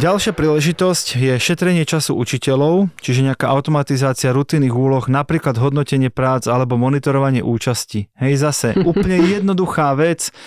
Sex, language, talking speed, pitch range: male, Slovak, 125 wpm, 125-150 Hz